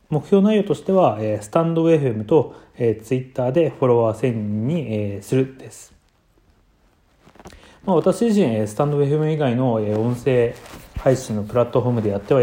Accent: native